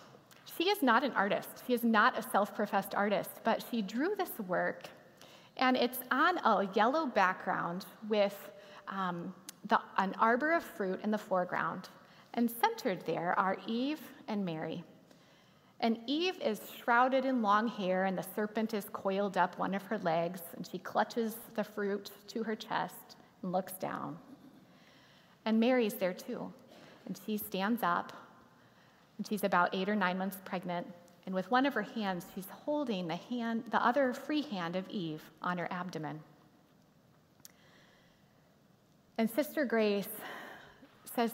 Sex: female